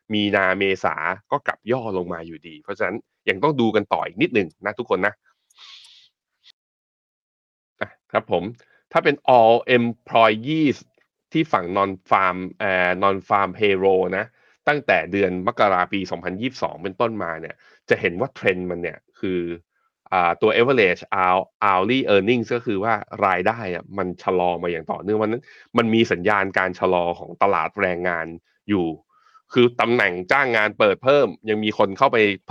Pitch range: 90-115 Hz